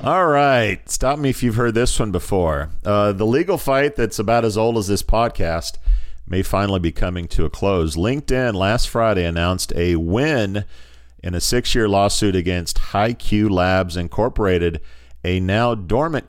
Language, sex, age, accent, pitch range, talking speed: English, male, 40-59, American, 90-110 Hz, 165 wpm